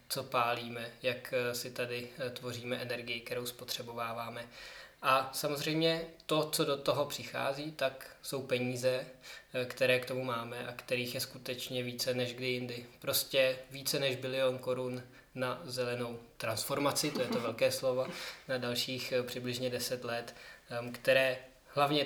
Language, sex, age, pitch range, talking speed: Czech, male, 20-39, 125-135 Hz, 140 wpm